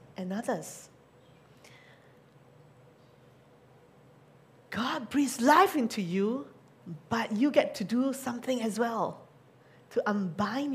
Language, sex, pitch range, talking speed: English, female, 160-225 Hz, 95 wpm